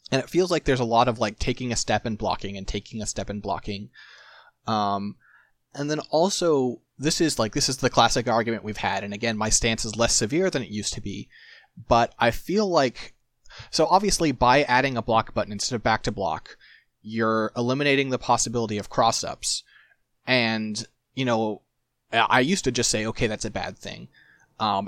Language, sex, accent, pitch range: English, male, American, 110-125 Hz